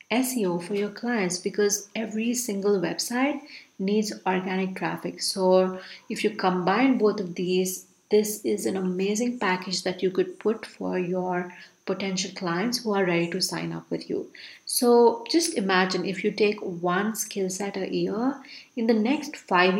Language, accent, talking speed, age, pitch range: English, Indian, 165 wpm, 30-49, 185-235 Hz